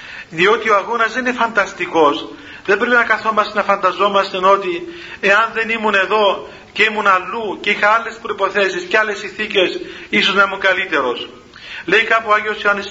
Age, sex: 40-59, male